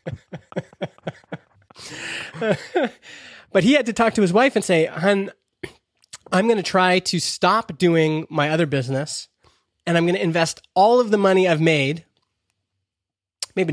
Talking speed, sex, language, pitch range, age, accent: 145 wpm, male, English, 140-185 Hz, 20-39, American